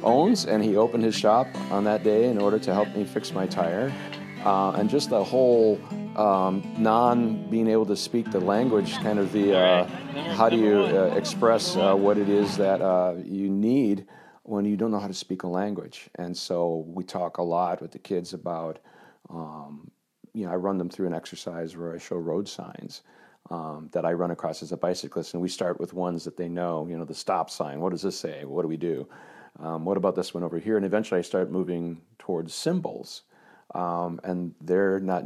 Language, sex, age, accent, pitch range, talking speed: English, male, 40-59, American, 85-105 Hz, 215 wpm